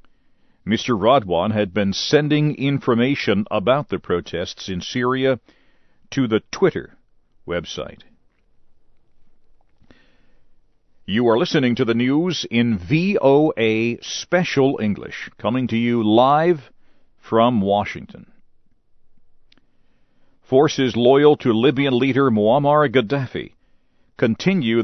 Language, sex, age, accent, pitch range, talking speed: English, male, 50-69, American, 115-150 Hz, 95 wpm